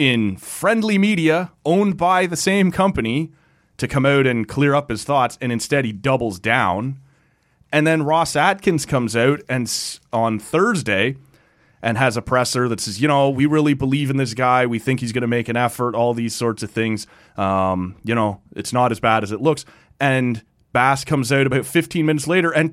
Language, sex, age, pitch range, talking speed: English, male, 30-49, 115-150 Hz, 200 wpm